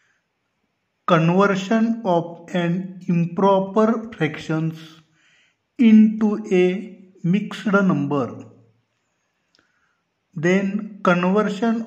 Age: 50-69